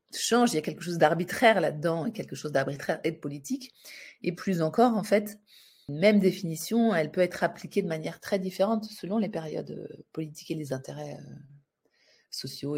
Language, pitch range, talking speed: French, 140-180 Hz, 185 wpm